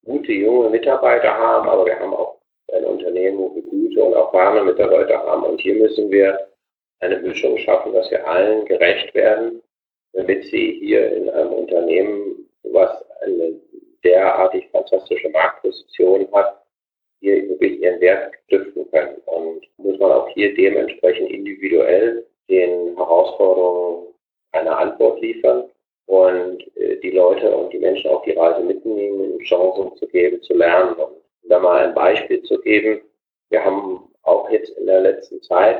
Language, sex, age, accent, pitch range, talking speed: German, male, 40-59, German, 330-445 Hz, 150 wpm